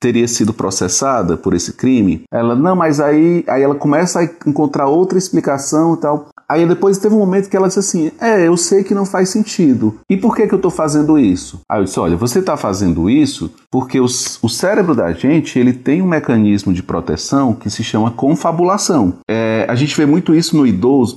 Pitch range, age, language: 120-175 Hz, 30-49, Portuguese